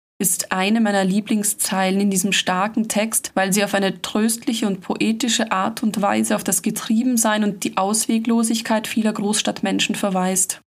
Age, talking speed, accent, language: 20-39, 150 wpm, German, German